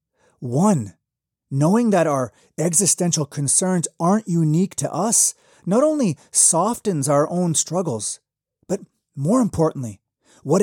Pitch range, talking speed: 130-200 Hz, 115 wpm